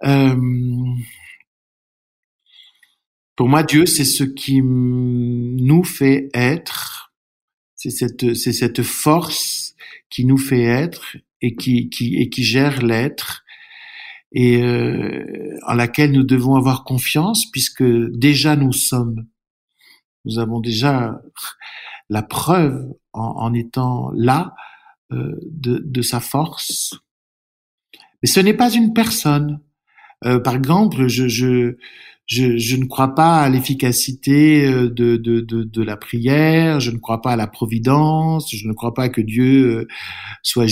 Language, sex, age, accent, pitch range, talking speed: French, male, 60-79, French, 120-155 Hz, 135 wpm